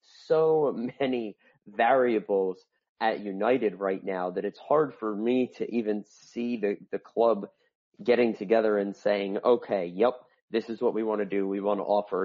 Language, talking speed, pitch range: English, 170 wpm, 95-115 Hz